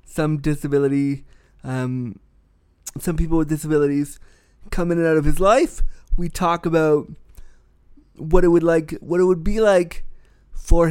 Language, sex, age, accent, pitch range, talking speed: English, male, 20-39, American, 140-185 Hz, 145 wpm